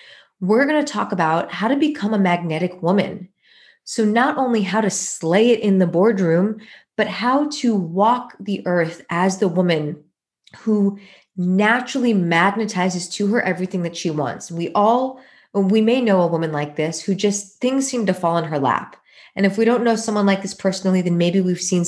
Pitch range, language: 175-225 Hz, English